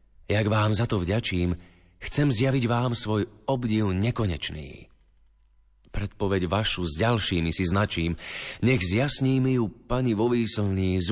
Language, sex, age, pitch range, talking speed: Slovak, male, 30-49, 90-120 Hz, 130 wpm